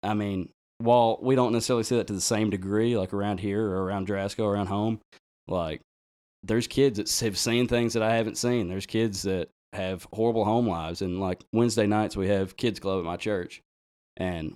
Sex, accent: male, American